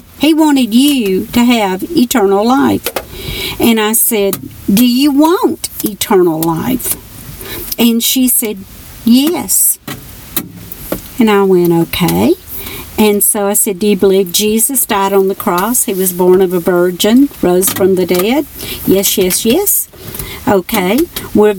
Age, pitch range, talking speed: 50-69, 195-255 Hz, 140 wpm